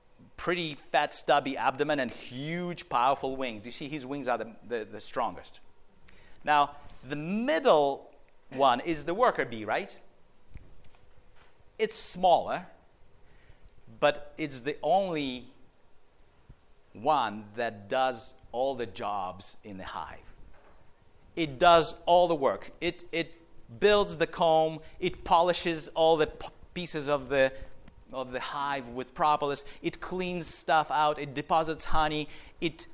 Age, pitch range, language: 40-59, 130-165 Hz, English